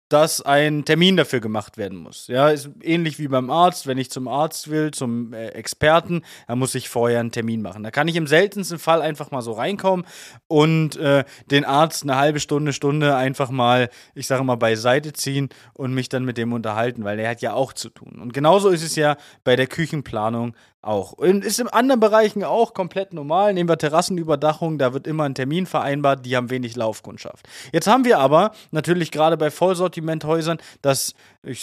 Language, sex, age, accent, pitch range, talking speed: German, male, 20-39, German, 130-180 Hz, 200 wpm